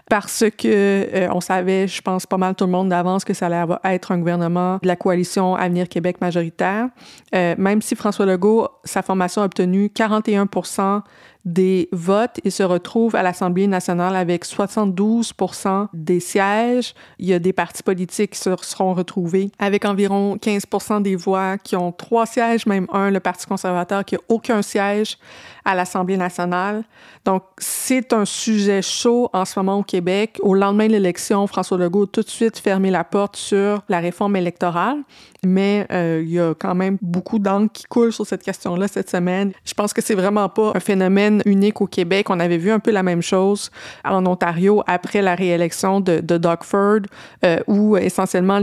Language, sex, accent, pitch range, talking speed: English, female, Canadian, 180-205 Hz, 190 wpm